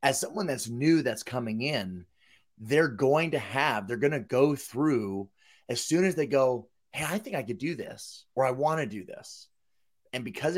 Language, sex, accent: English, male, American